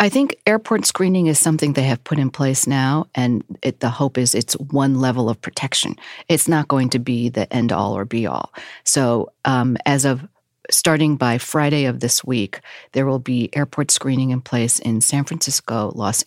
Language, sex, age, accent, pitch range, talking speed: English, female, 40-59, American, 120-140 Hz, 190 wpm